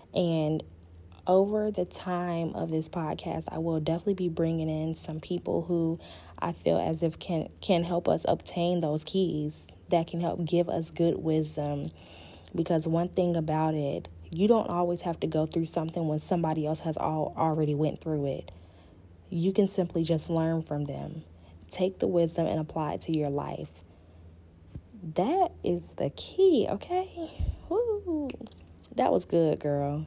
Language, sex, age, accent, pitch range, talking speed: English, female, 20-39, American, 145-175 Hz, 165 wpm